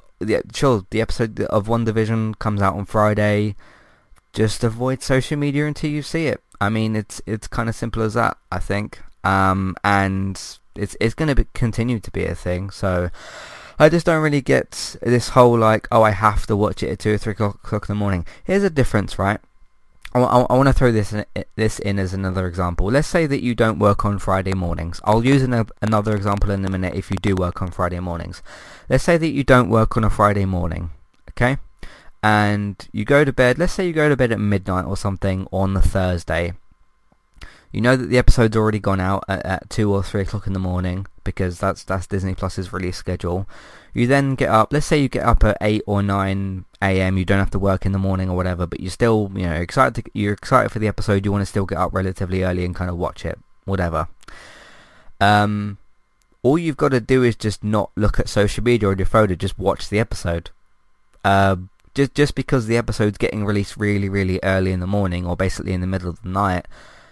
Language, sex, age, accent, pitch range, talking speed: English, male, 20-39, British, 95-115 Hz, 220 wpm